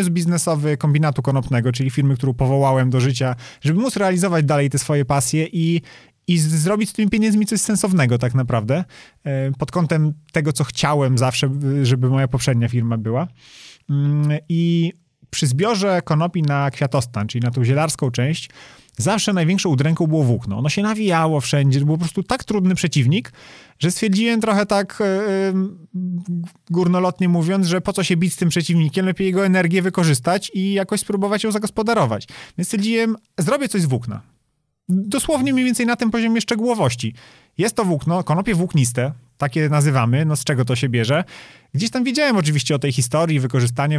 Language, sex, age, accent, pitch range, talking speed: Polish, male, 30-49, native, 135-195 Hz, 165 wpm